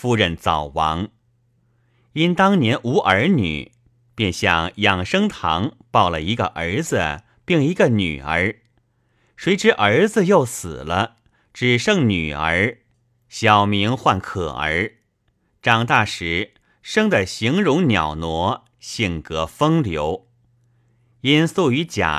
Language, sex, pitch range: Chinese, male, 95-120 Hz